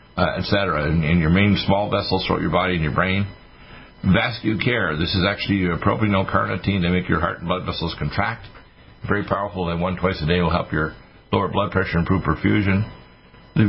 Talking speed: 195 wpm